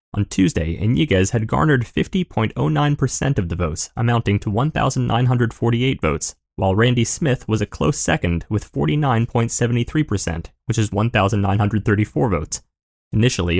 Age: 20-39